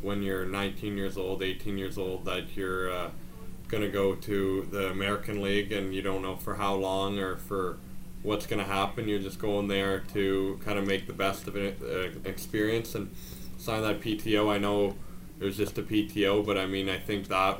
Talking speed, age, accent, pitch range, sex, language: 205 wpm, 20-39, American, 95-105 Hz, male, English